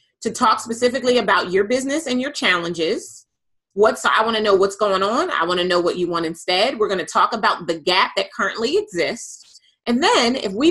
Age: 30-49